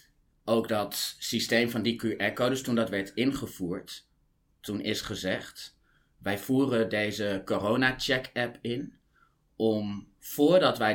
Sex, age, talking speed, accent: male, 30-49, 125 wpm, Dutch